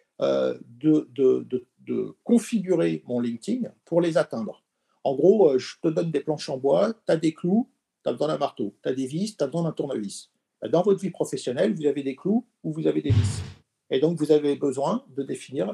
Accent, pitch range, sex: French, 130-180 Hz, male